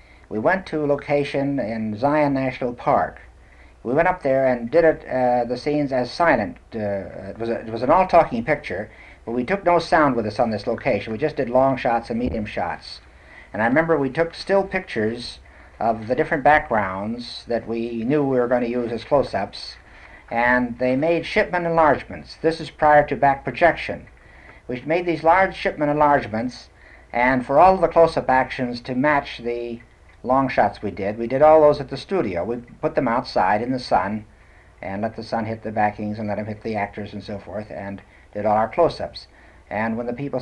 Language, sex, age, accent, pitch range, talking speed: English, male, 60-79, American, 105-140 Hz, 205 wpm